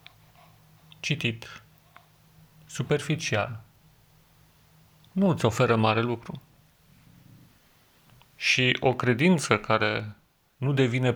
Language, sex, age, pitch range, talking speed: French, male, 40-59, 125-160 Hz, 70 wpm